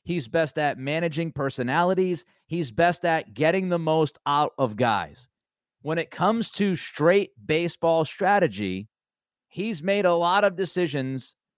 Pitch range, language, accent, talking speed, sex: 150-185 Hz, English, American, 140 wpm, male